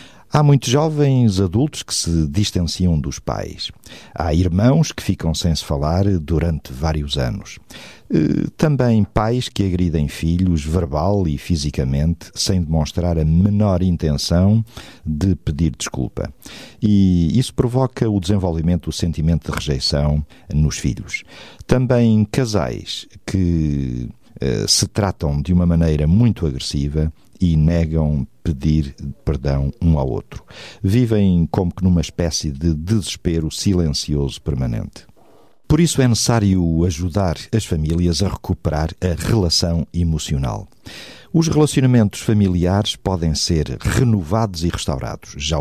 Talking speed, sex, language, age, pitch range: 120 wpm, male, Portuguese, 50-69, 80-105 Hz